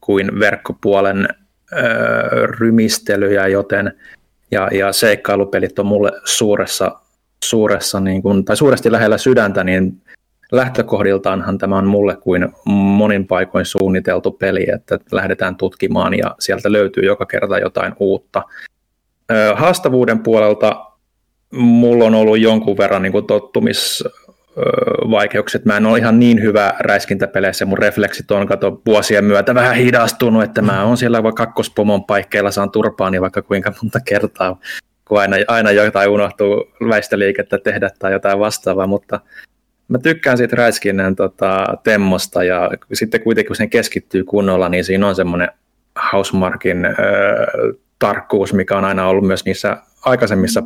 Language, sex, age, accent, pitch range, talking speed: Finnish, male, 20-39, native, 95-110 Hz, 135 wpm